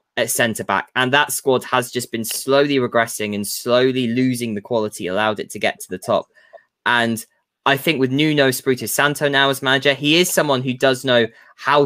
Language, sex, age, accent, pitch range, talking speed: English, male, 10-29, British, 110-135 Hz, 190 wpm